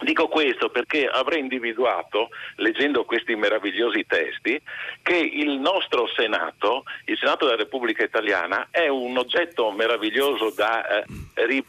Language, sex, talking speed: Italian, male, 125 wpm